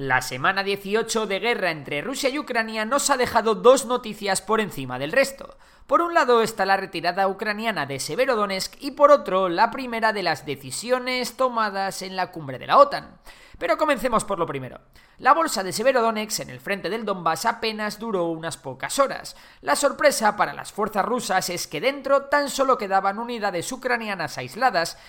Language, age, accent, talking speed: Spanish, 20-39, Spanish, 185 wpm